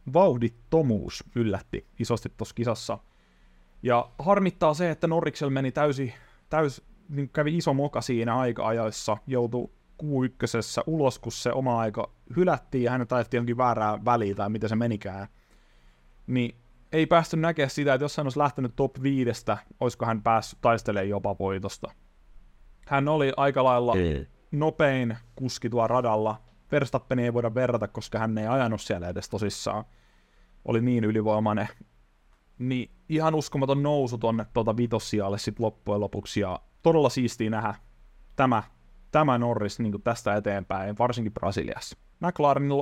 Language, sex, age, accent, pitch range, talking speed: Finnish, male, 30-49, native, 105-135 Hz, 140 wpm